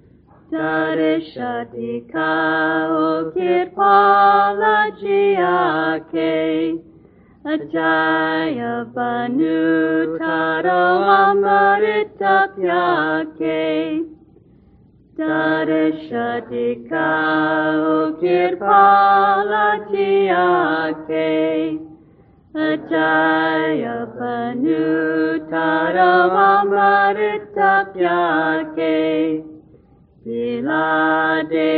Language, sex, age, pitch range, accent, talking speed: English, female, 40-59, 155-190 Hz, American, 35 wpm